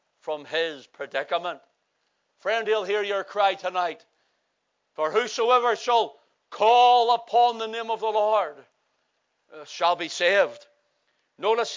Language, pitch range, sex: English, 195-230 Hz, male